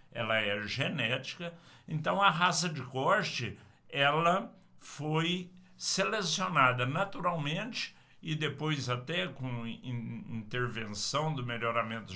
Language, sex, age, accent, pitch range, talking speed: English, male, 60-79, Brazilian, 125-170 Hz, 100 wpm